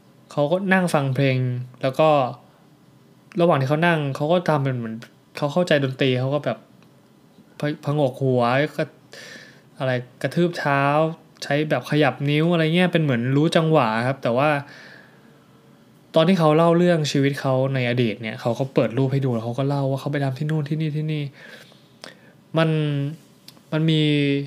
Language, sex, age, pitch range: Thai, male, 20-39, 130-155 Hz